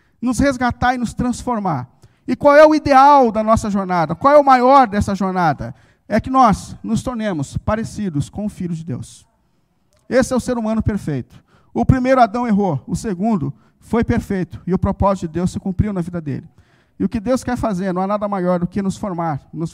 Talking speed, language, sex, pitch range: 210 wpm, Portuguese, male, 175-240 Hz